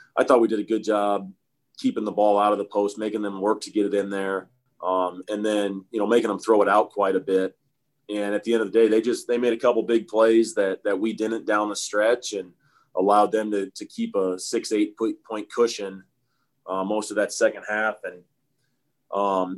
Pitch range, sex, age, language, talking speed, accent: 100-115 Hz, male, 30-49, English, 235 wpm, American